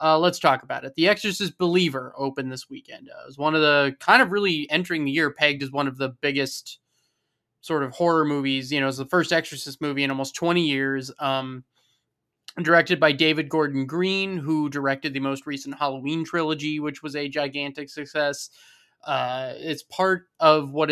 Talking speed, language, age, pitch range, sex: 190 wpm, English, 20-39, 140-175 Hz, male